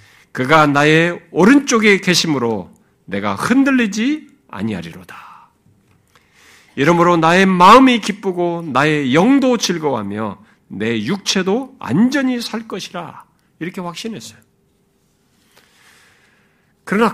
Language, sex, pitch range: Korean, male, 165-235 Hz